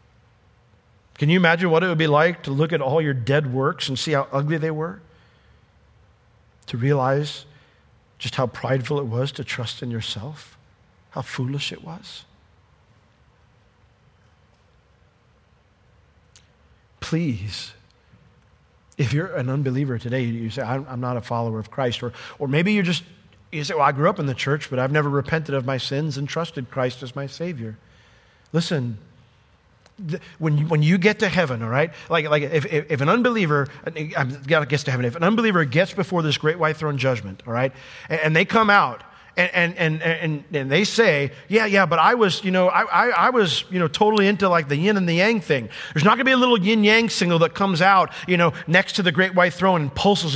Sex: male